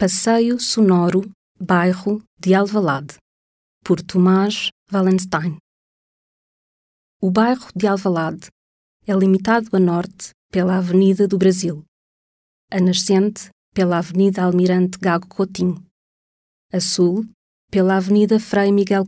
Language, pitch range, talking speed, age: Portuguese, 180-205 Hz, 105 wpm, 20-39